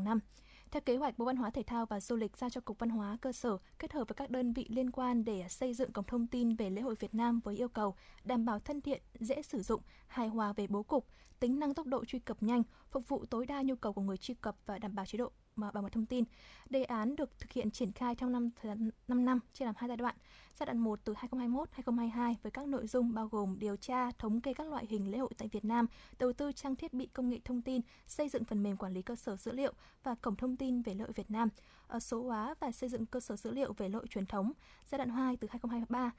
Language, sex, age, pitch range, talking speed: Vietnamese, female, 10-29, 215-255 Hz, 270 wpm